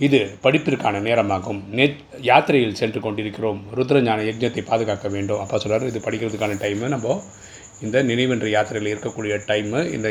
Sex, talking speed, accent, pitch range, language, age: male, 135 wpm, native, 105-125 Hz, Tamil, 30-49